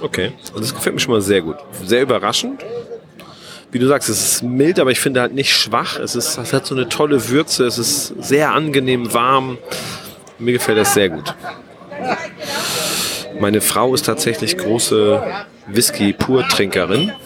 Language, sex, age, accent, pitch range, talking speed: German, male, 40-59, German, 115-150 Hz, 165 wpm